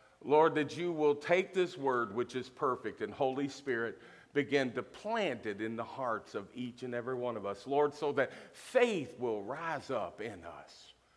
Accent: American